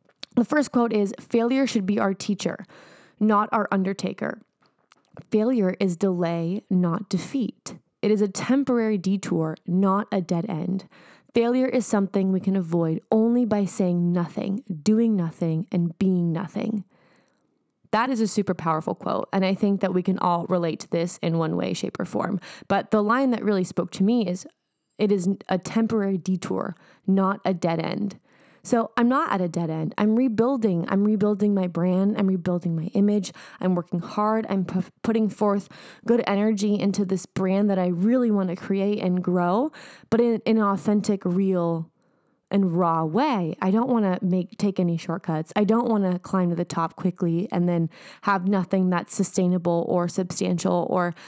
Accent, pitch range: American, 180-215 Hz